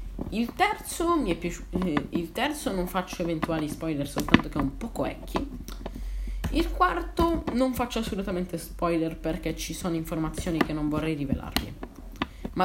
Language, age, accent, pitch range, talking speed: Italian, 30-49, native, 160-250 Hz, 155 wpm